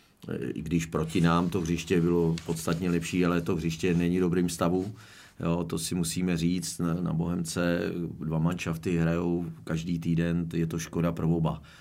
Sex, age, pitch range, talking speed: male, 40-59, 85-100 Hz, 165 wpm